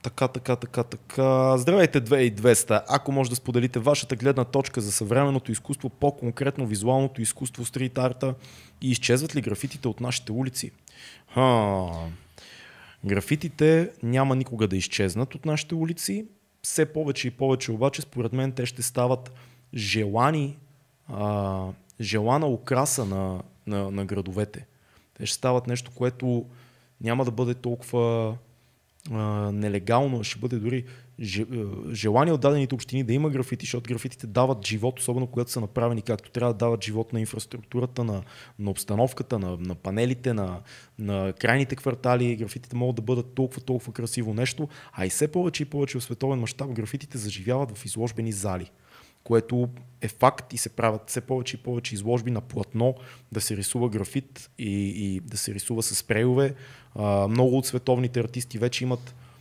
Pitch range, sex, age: 110-130 Hz, male, 20-39